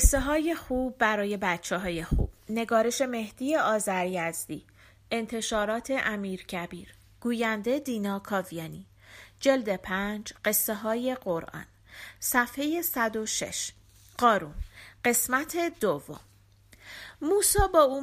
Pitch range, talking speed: 200-305 Hz, 90 wpm